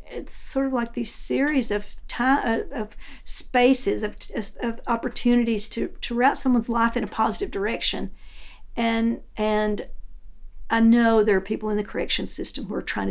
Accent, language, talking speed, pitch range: American, English, 170 wpm, 205-240 Hz